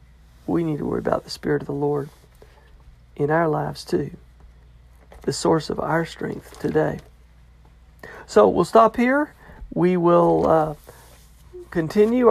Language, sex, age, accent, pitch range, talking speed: English, male, 50-69, American, 145-210 Hz, 135 wpm